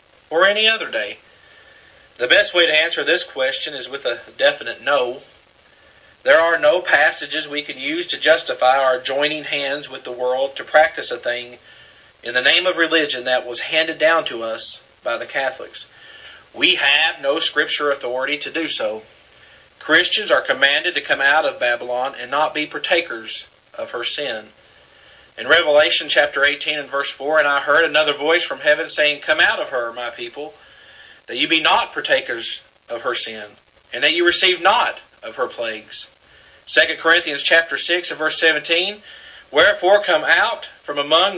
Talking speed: 175 wpm